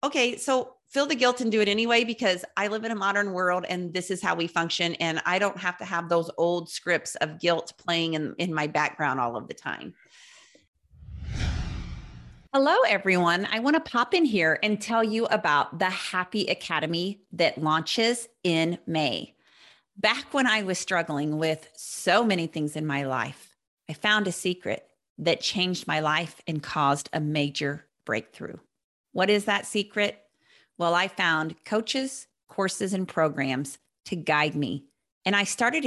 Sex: female